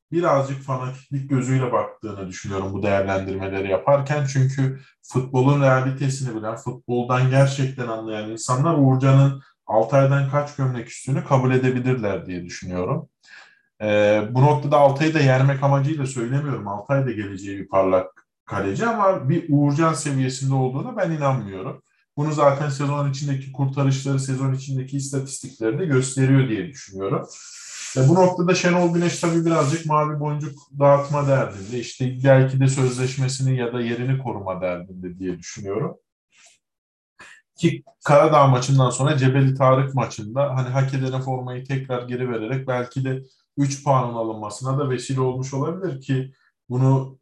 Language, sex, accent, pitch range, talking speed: Turkish, male, native, 120-140 Hz, 130 wpm